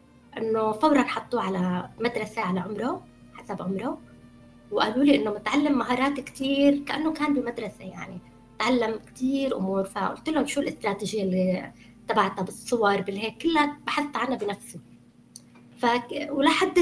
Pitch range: 190-250 Hz